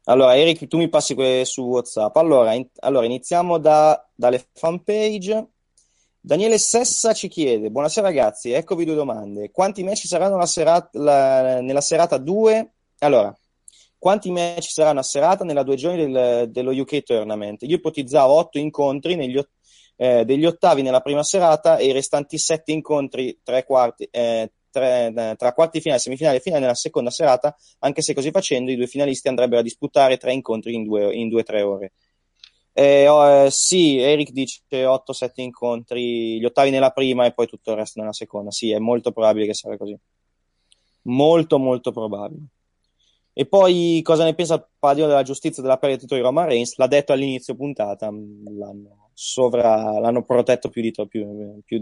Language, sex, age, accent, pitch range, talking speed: Italian, male, 30-49, native, 115-155 Hz, 175 wpm